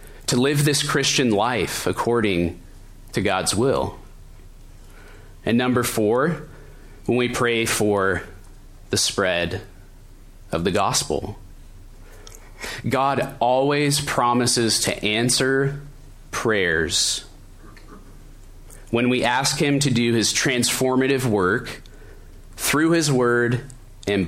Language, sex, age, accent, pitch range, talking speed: English, male, 30-49, American, 100-130 Hz, 100 wpm